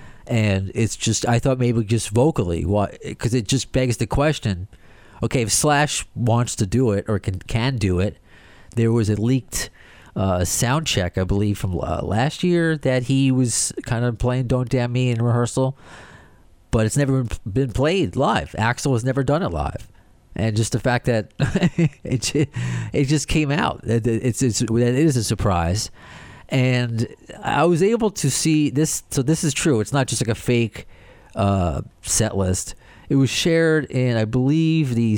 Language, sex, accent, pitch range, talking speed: English, male, American, 100-130 Hz, 175 wpm